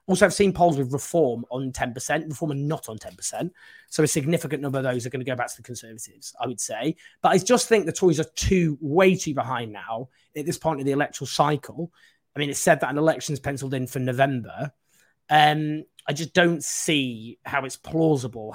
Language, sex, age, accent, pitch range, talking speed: English, male, 20-39, British, 135-170 Hz, 220 wpm